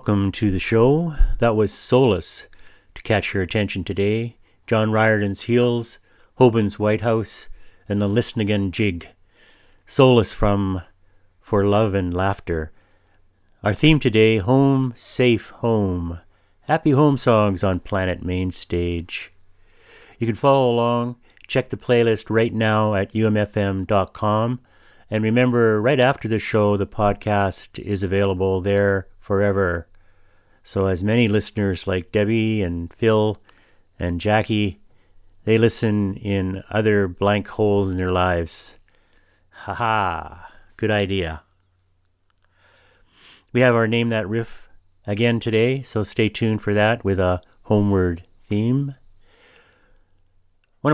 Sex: male